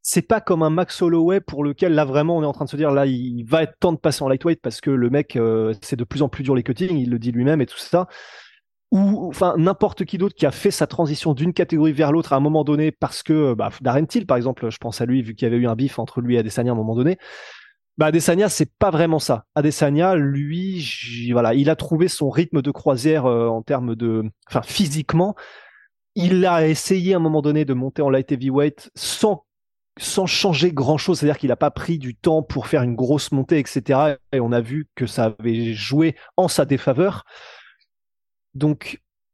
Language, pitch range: French, 135-175 Hz